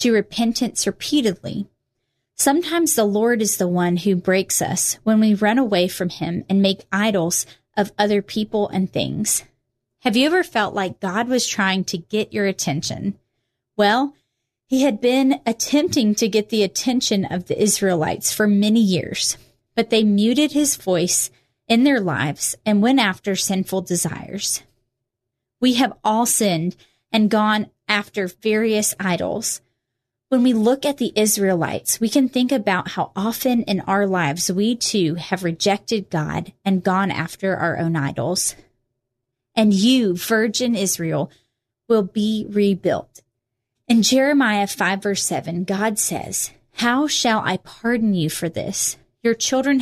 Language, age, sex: English, 30-49, female